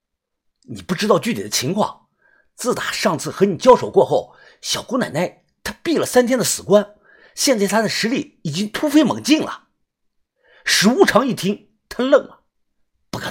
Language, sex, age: Chinese, male, 50-69